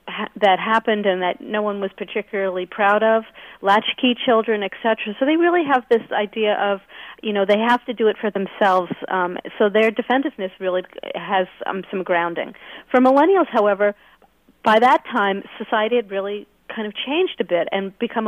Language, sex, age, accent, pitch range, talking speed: English, female, 40-59, American, 185-230 Hz, 180 wpm